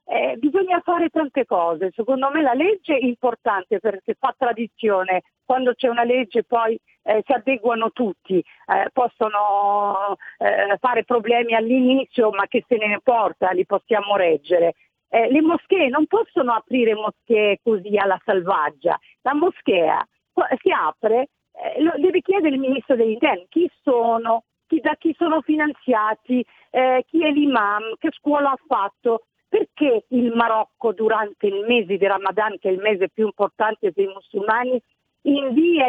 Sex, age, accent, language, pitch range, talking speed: female, 50-69, native, Italian, 215-300 Hz, 150 wpm